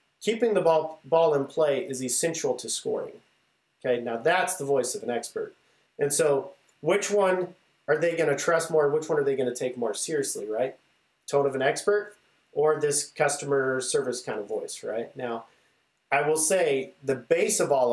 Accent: American